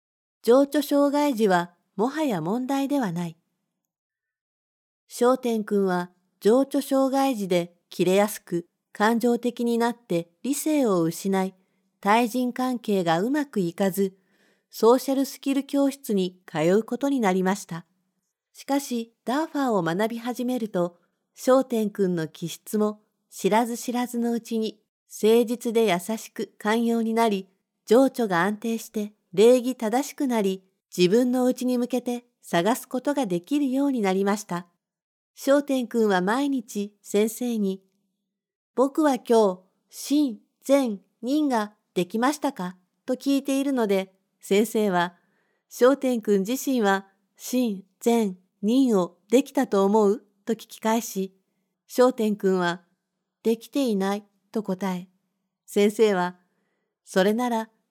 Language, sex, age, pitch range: Japanese, female, 50-69, 190-245 Hz